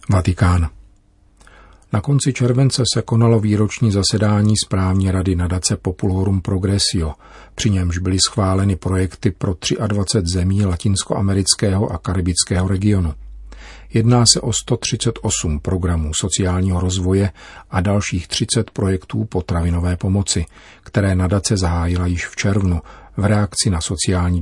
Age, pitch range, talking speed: 50-69, 90-105 Hz, 120 wpm